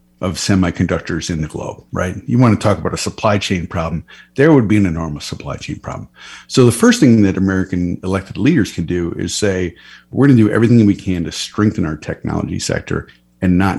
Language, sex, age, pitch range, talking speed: English, male, 50-69, 90-110 Hz, 215 wpm